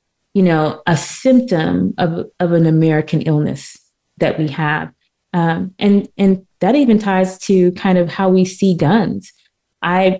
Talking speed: 155 wpm